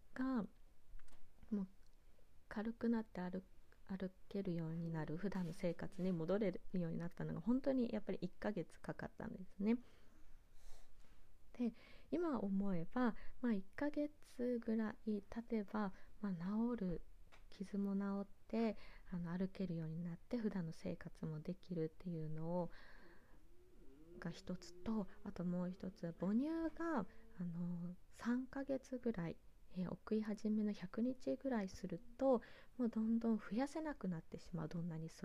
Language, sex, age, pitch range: Japanese, female, 20-39, 170-235 Hz